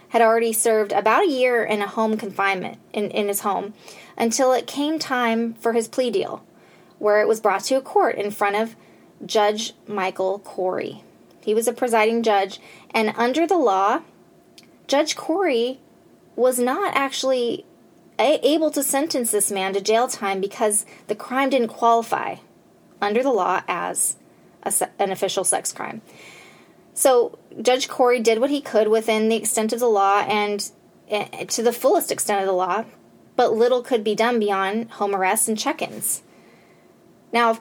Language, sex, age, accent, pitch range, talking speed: English, female, 20-39, American, 205-260 Hz, 165 wpm